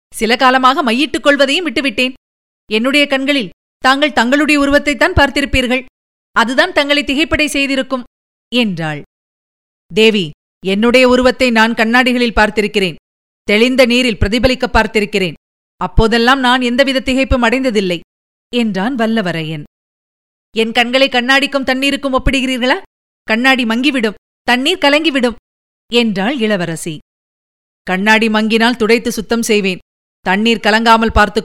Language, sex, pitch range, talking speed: Tamil, female, 215-285 Hz, 100 wpm